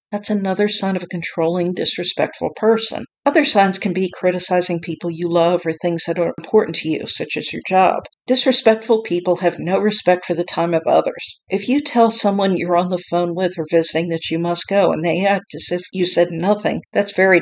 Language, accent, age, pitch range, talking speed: English, American, 50-69, 170-210 Hz, 215 wpm